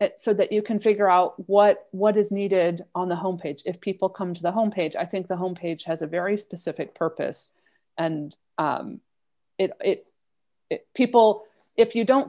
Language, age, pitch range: English, 30-49, 170-215 Hz